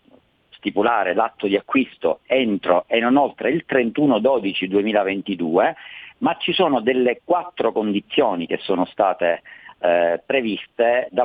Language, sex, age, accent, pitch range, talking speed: Italian, male, 40-59, native, 100-125 Hz, 115 wpm